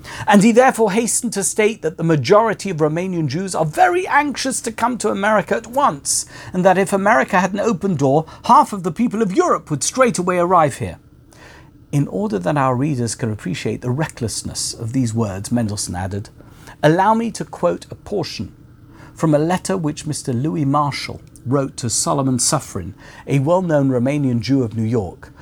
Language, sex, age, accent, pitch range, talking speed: English, male, 50-69, British, 115-180 Hz, 185 wpm